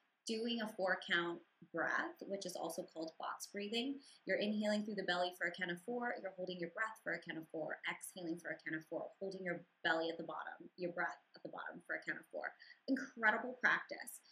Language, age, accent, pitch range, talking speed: English, 20-39, American, 175-210 Hz, 220 wpm